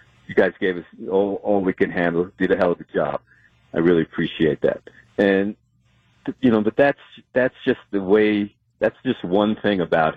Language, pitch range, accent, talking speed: English, 85-125 Hz, American, 195 wpm